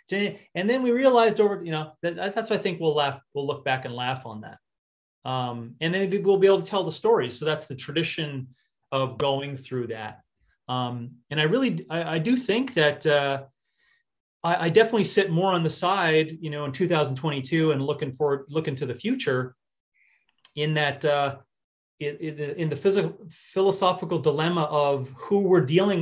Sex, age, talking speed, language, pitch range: male, 30-49, 190 wpm, English, 135-170 Hz